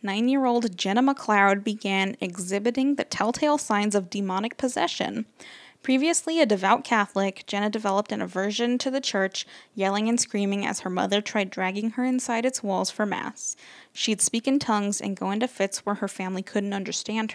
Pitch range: 200-250 Hz